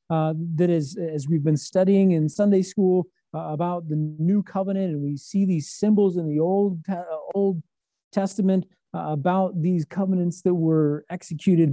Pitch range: 155-195 Hz